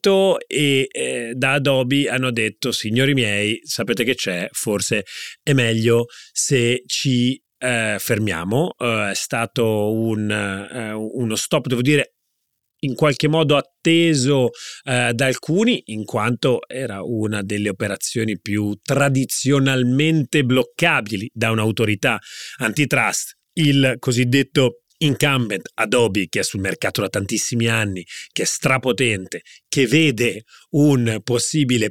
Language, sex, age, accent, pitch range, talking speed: Italian, male, 30-49, native, 110-145 Hz, 120 wpm